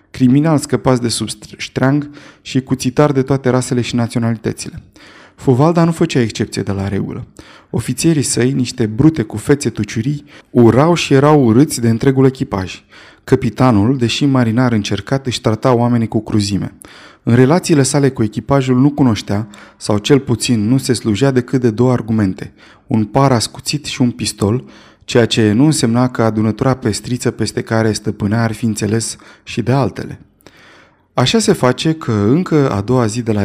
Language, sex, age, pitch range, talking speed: Romanian, male, 20-39, 110-140 Hz, 160 wpm